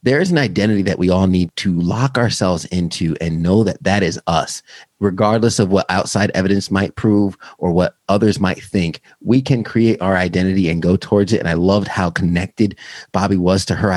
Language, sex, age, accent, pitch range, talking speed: English, male, 30-49, American, 90-120 Hz, 205 wpm